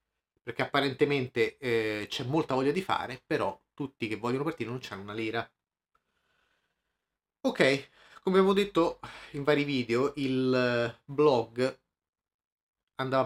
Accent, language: native, Italian